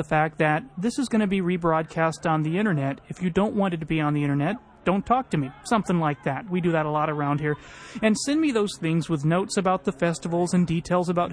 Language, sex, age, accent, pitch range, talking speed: English, male, 30-49, American, 155-200 Hz, 260 wpm